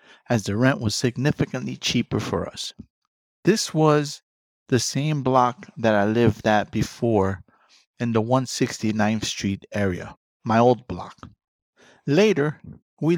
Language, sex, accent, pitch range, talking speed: English, male, American, 105-135 Hz, 125 wpm